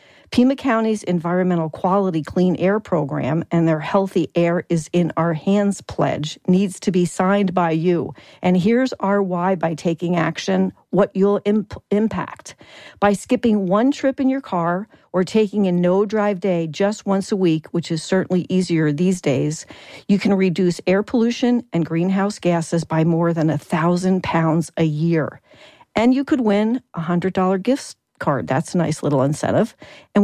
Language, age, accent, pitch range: English, 50-69, American, 165-205 Hz